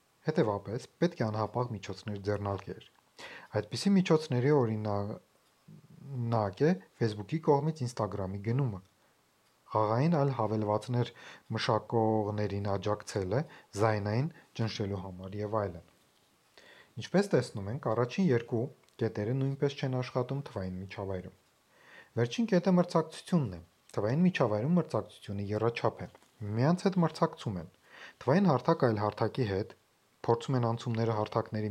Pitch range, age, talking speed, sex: 105-140 Hz, 30-49, 60 wpm, male